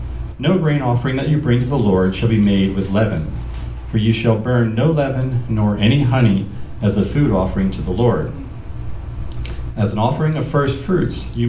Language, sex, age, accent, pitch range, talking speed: English, male, 40-59, American, 95-125 Hz, 195 wpm